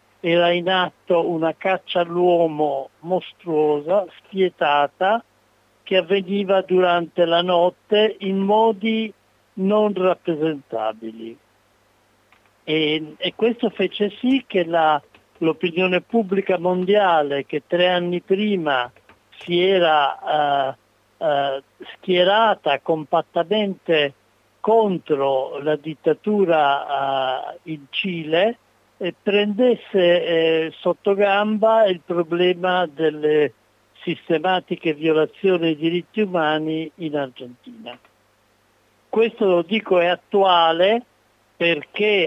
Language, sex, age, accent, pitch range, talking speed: Italian, male, 60-79, native, 150-190 Hz, 90 wpm